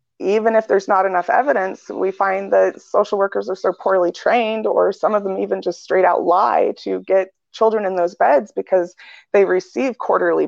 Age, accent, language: 20-39, American, English